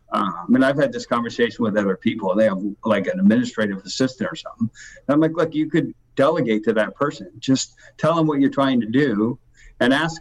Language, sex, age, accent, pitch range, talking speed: English, male, 50-69, American, 115-160 Hz, 215 wpm